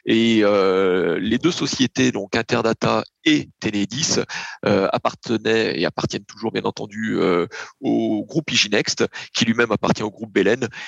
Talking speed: 145 wpm